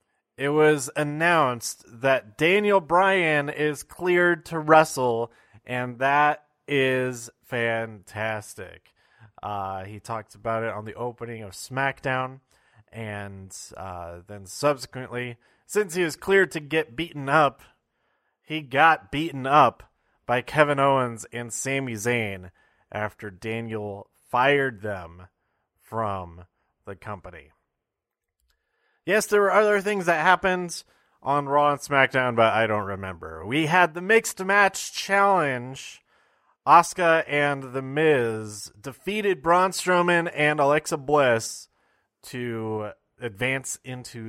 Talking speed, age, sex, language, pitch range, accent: 120 wpm, 30-49, male, English, 110-155 Hz, American